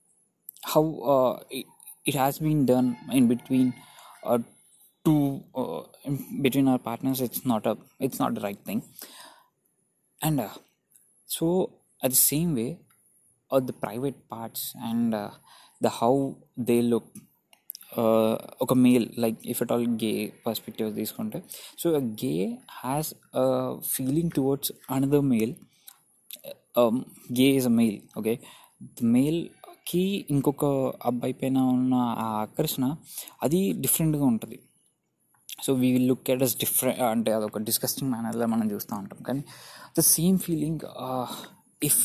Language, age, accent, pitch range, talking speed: Telugu, 20-39, native, 120-145 Hz, 140 wpm